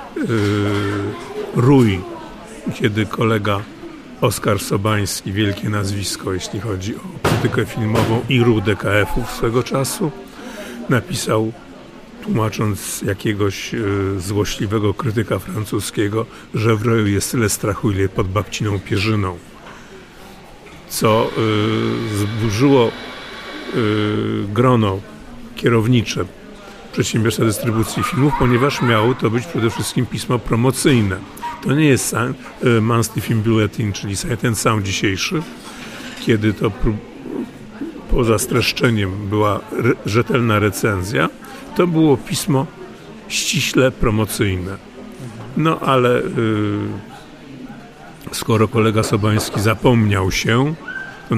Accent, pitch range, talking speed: native, 105-125 Hz, 100 wpm